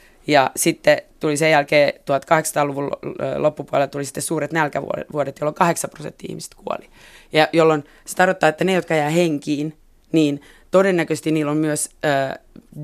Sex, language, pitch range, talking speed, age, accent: female, Finnish, 145-165 Hz, 140 wpm, 20-39, native